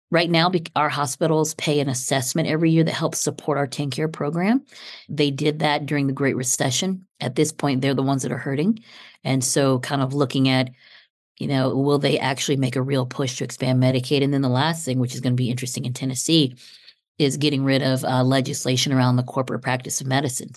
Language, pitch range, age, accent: English, 130-155 Hz, 40-59, American